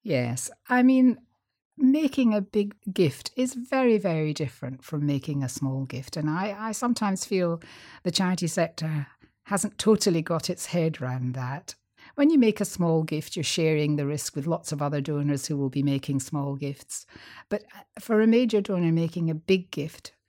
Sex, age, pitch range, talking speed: female, 60-79, 140-185 Hz, 180 wpm